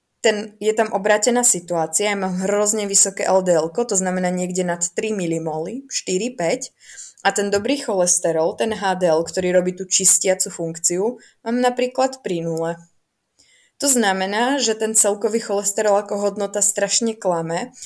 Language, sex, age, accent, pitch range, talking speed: Czech, female, 20-39, native, 170-210 Hz, 140 wpm